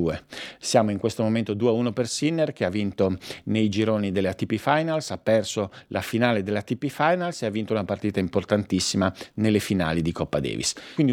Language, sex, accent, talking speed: Italian, male, native, 185 wpm